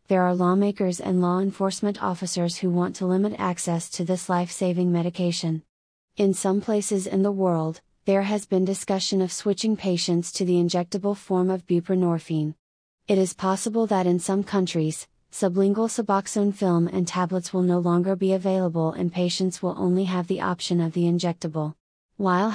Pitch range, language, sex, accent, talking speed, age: 175-195 Hz, English, female, American, 170 wpm, 30-49